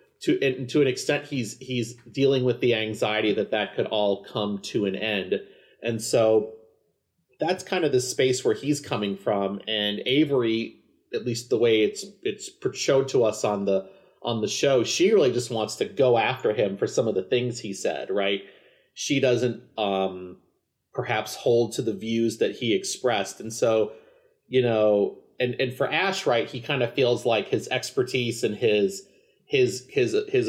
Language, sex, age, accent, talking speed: English, male, 30-49, American, 185 wpm